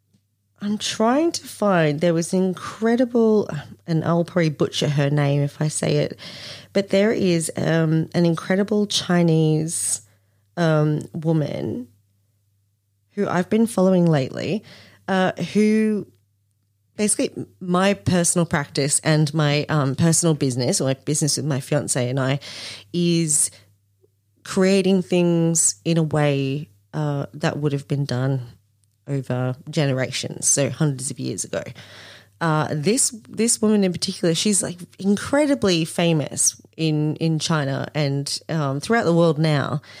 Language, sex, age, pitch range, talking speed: English, female, 30-49, 135-185 Hz, 130 wpm